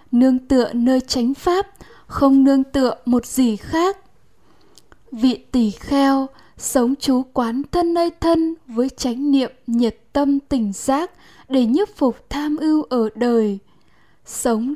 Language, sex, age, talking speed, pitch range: Vietnamese, female, 10-29, 140 wpm, 240-285 Hz